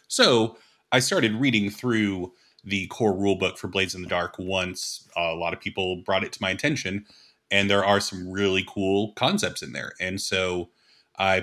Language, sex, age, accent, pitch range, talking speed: English, male, 30-49, American, 95-110 Hz, 185 wpm